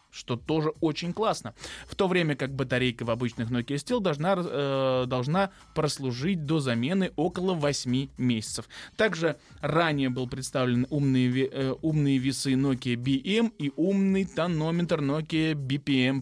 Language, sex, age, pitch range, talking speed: Russian, male, 20-39, 130-170 Hz, 135 wpm